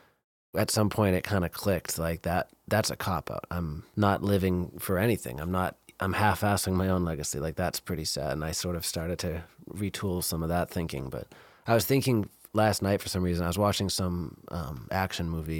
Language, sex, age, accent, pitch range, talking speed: English, male, 20-39, American, 85-105 Hz, 210 wpm